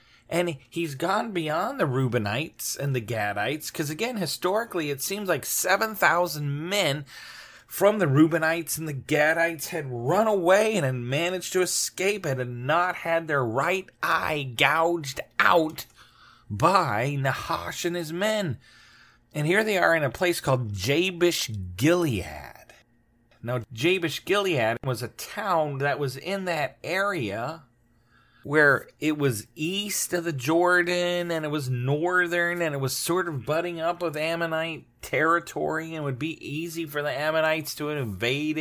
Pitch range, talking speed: 130-175 Hz, 150 wpm